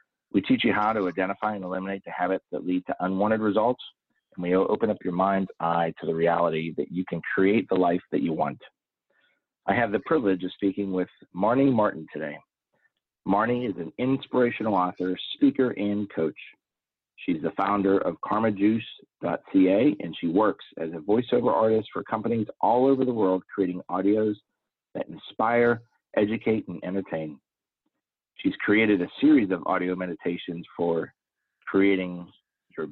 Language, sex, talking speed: English, male, 160 wpm